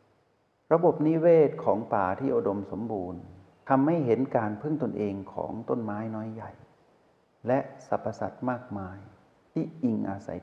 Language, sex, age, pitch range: Thai, male, 60-79, 100-135 Hz